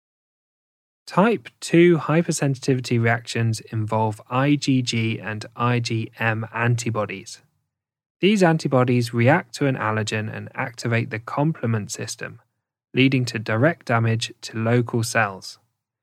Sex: male